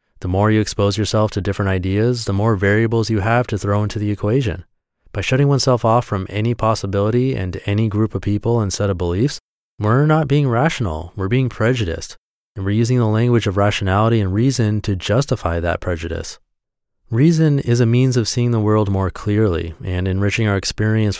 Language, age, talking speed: English, 30-49, 190 wpm